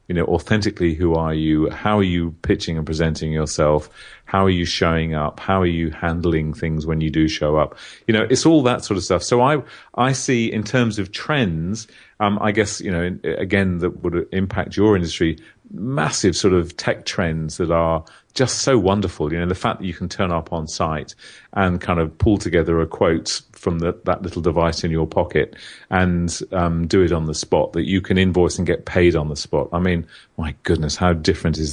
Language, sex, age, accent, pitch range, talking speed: English, male, 40-59, British, 80-95 Hz, 220 wpm